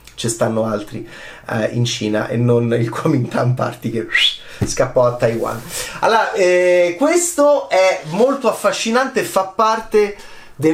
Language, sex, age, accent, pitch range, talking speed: Italian, male, 30-49, native, 125-175 Hz, 140 wpm